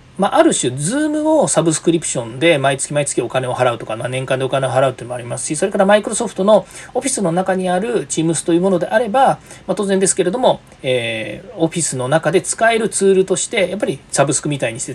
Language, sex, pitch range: Japanese, male, 135-215 Hz